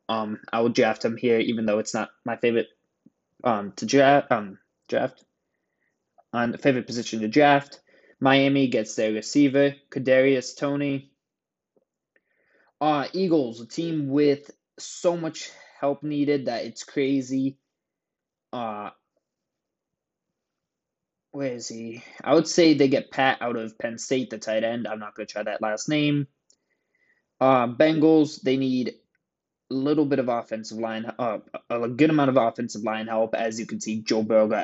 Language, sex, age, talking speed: English, male, 20-39, 155 wpm